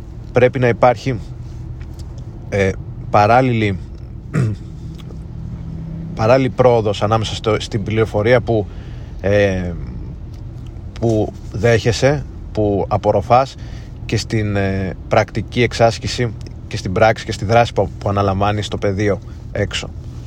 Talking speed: 100 wpm